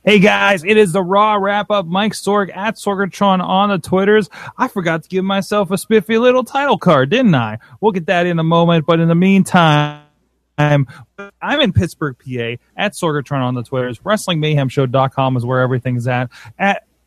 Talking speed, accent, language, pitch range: 180 wpm, American, English, 140-180 Hz